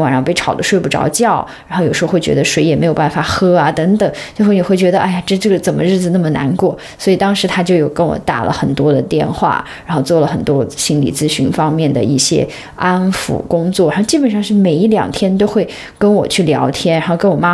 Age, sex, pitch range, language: 20-39, female, 160-205 Hz, Chinese